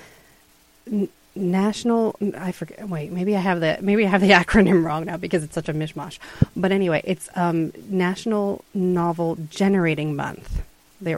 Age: 30-49